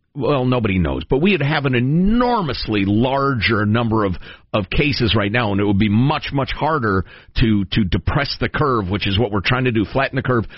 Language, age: English, 50-69